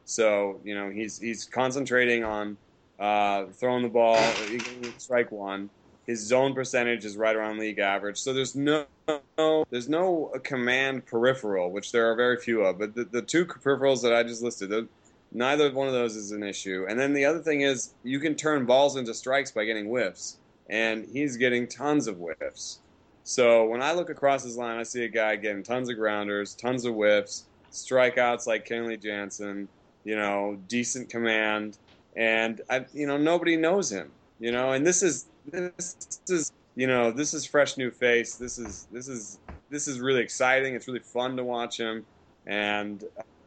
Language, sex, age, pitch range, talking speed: English, male, 20-39, 105-130 Hz, 190 wpm